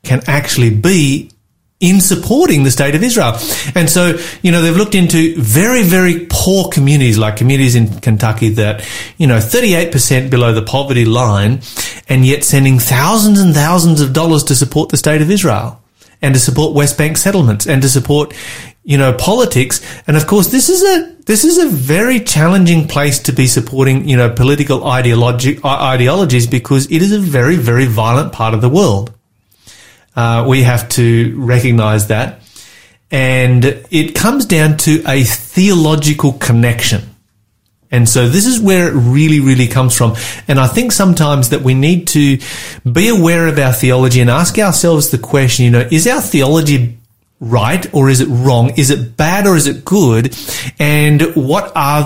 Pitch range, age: 125-165 Hz, 30-49